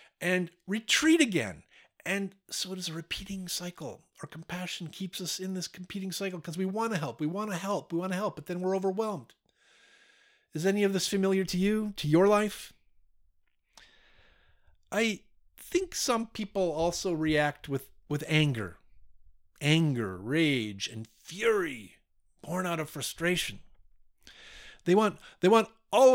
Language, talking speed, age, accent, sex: English, 155 wpm, 50-69, American, male